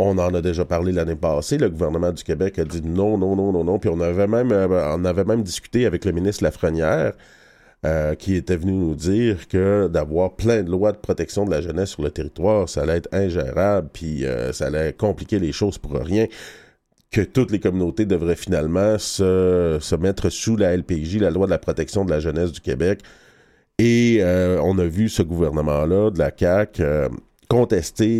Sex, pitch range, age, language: male, 85-105 Hz, 40-59, French